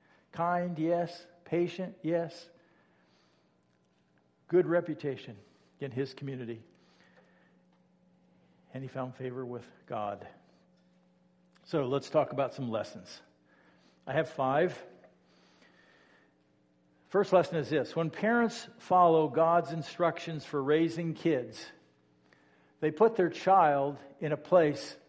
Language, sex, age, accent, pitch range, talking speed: English, male, 60-79, American, 130-175 Hz, 105 wpm